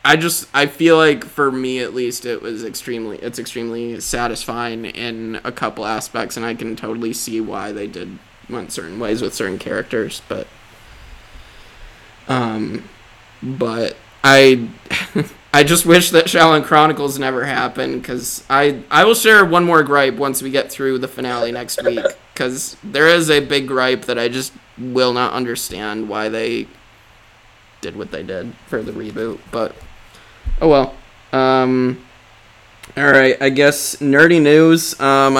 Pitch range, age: 115-135 Hz, 20-39